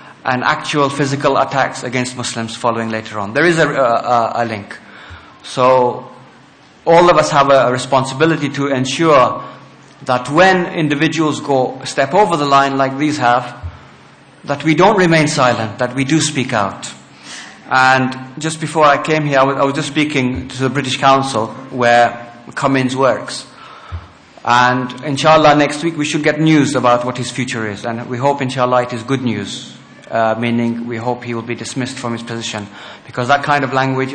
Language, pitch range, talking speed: English, 120-150 Hz, 175 wpm